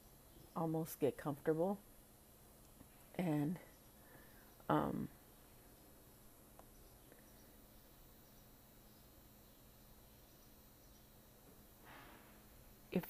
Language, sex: English, female